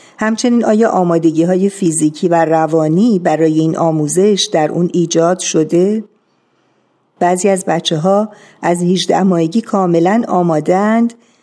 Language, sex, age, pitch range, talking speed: Persian, female, 50-69, 165-215 Hz, 115 wpm